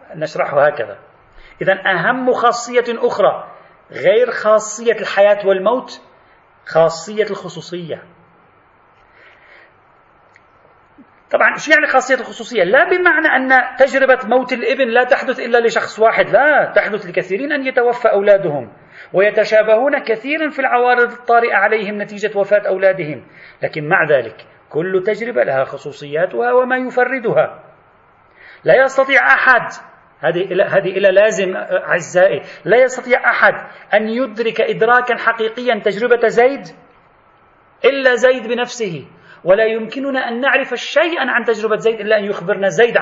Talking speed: 115 wpm